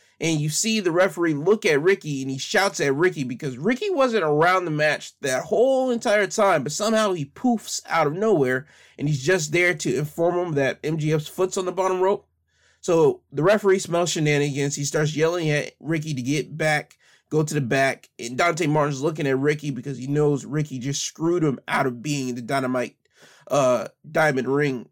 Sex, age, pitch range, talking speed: male, 30-49, 135-165 Hz, 195 wpm